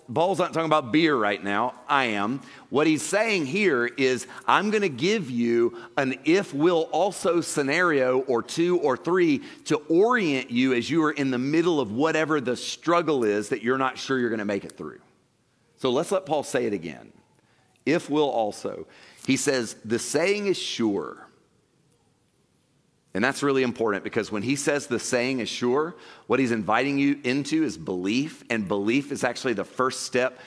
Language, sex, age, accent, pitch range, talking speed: English, male, 40-59, American, 110-150 Hz, 175 wpm